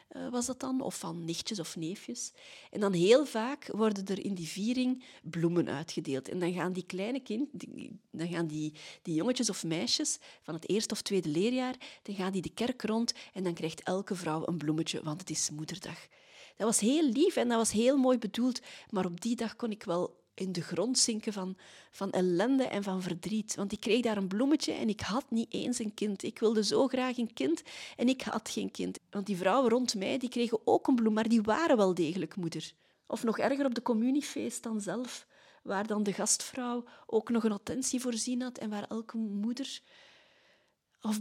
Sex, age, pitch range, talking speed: female, 40-59, 185-240 Hz, 210 wpm